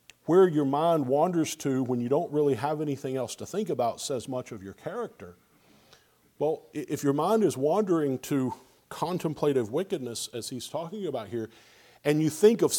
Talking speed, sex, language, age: 180 wpm, male, English, 50-69